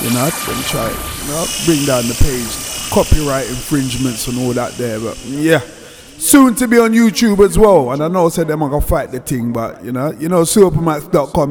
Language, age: English, 20-39